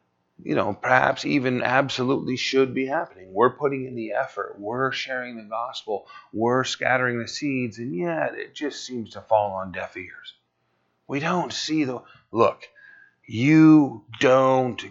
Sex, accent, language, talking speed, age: male, American, English, 155 wpm, 40-59